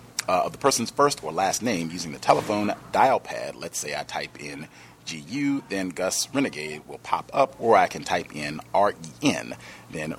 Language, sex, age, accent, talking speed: English, male, 40-59, American, 190 wpm